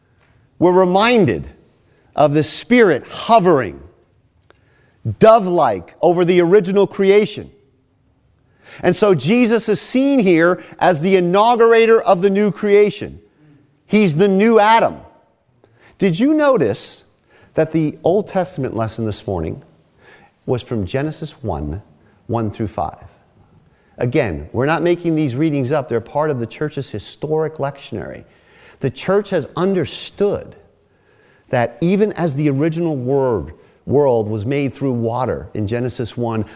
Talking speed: 125 wpm